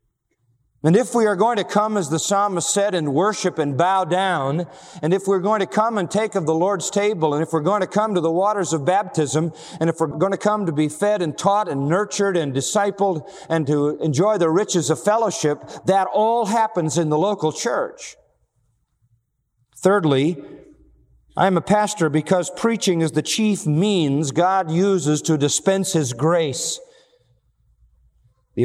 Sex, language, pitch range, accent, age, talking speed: male, English, 150-195 Hz, American, 50-69, 180 wpm